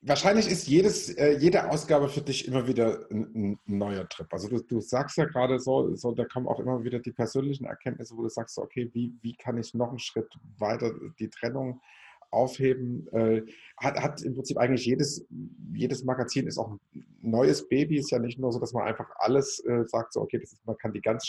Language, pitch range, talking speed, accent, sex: German, 110-130 Hz, 225 wpm, German, male